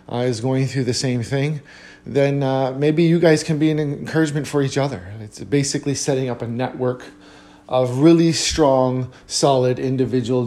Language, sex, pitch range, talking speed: English, male, 120-135 Hz, 170 wpm